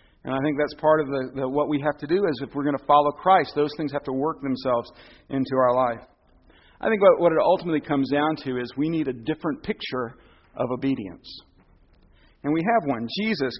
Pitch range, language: 130-160 Hz, English